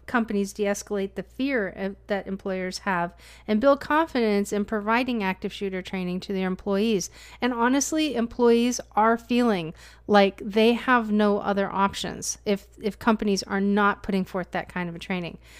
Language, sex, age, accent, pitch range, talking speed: English, female, 40-59, American, 195-225 Hz, 160 wpm